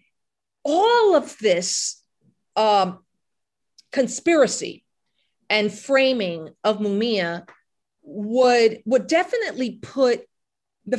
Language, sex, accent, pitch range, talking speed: English, female, American, 200-265 Hz, 75 wpm